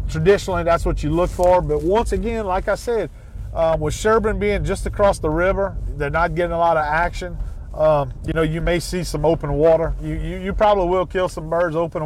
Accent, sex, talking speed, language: American, male, 225 wpm, English